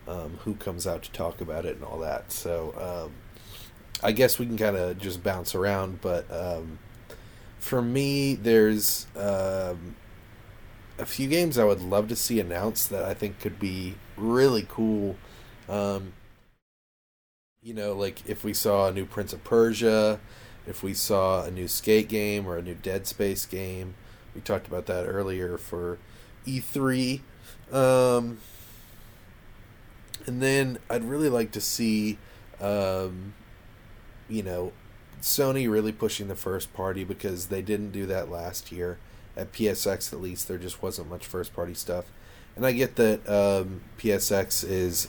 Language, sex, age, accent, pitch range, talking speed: English, male, 30-49, American, 95-110 Hz, 155 wpm